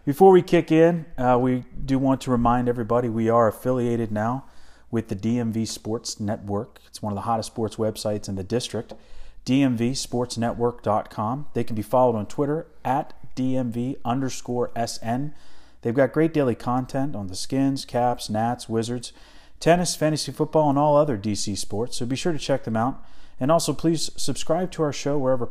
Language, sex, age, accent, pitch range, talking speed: English, male, 30-49, American, 110-135 Hz, 175 wpm